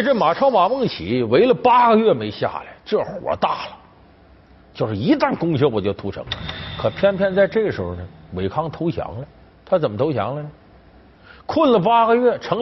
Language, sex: Chinese, male